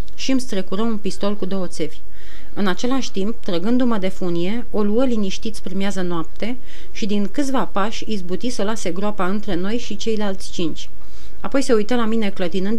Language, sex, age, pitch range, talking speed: Romanian, female, 30-49, 185-230 Hz, 185 wpm